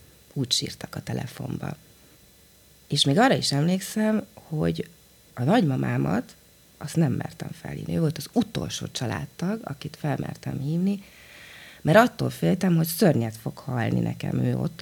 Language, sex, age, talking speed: Hungarian, female, 30-49, 140 wpm